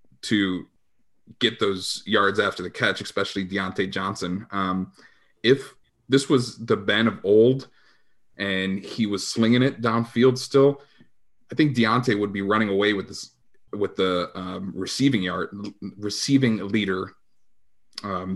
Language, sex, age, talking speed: English, male, 30-49, 135 wpm